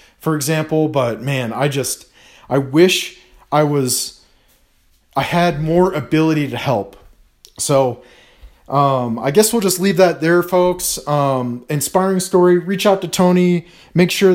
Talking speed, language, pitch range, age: 145 wpm, English, 140-175 Hz, 30-49